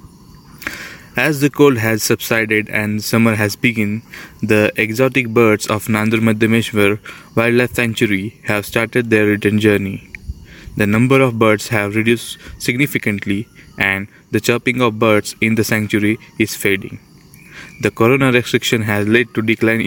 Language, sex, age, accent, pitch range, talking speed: Marathi, male, 20-39, native, 105-125 Hz, 140 wpm